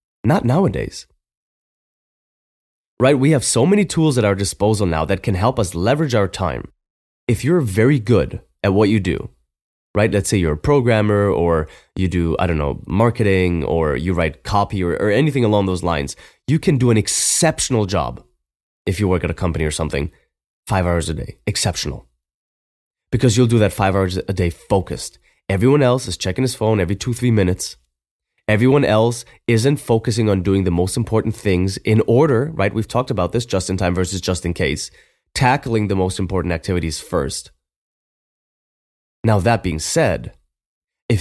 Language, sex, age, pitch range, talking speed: English, male, 20-39, 85-115 Hz, 180 wpm